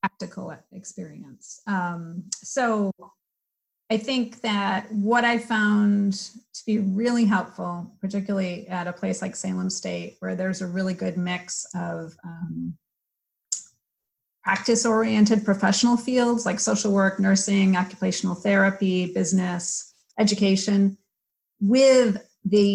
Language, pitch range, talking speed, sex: English, 180-215 Hz, 115 wpm, female